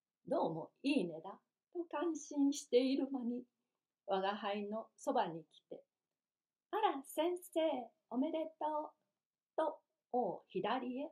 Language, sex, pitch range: Japanese, female, 200-310 Hz